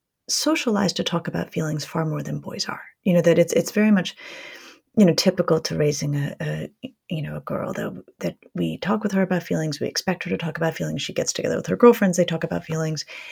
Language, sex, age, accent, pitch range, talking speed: English, female, 30-49, American, 160-230 Hz, 240 wpm